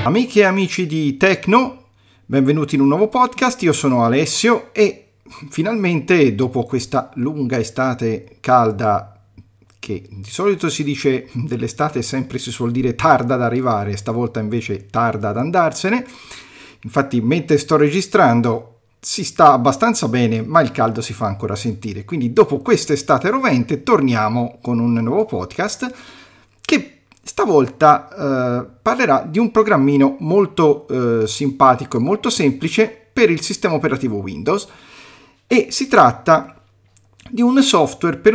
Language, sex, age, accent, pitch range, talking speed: Italian, male, 40-59, native, 115-160 Hz, 135 wpm